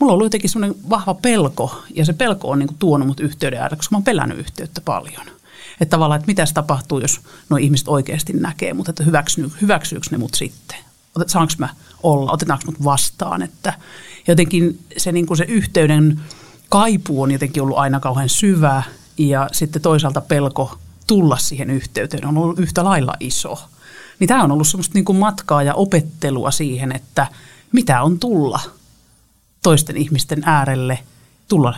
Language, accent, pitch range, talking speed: Finnish, native, 145-175 Hz, 160 wpm